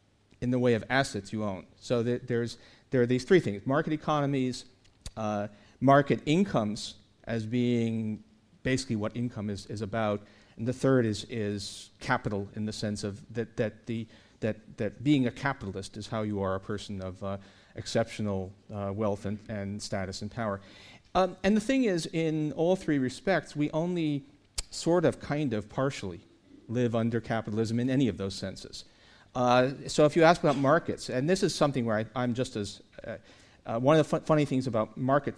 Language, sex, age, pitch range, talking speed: English, male, 50-69, 105-135 Hz, 190 wpm